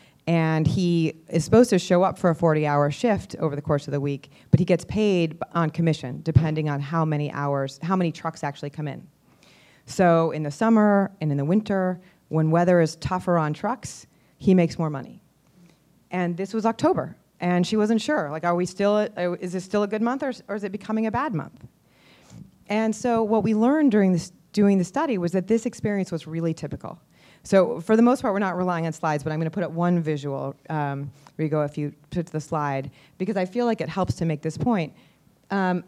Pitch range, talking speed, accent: 155-205 Hz, 220 wpm, American